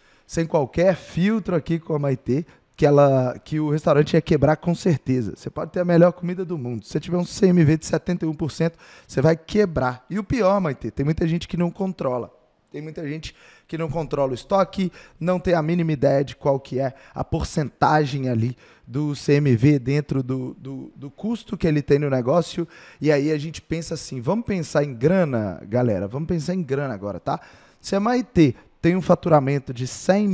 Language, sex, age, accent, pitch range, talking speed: Portuguese, male, 20-39, Brazilian, 140-180 Hz, 205 wpm